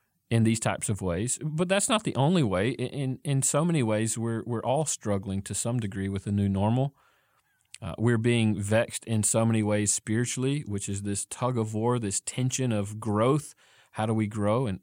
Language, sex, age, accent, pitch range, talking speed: English, male, 40-59, American, 110-135 Hz, 210 wpm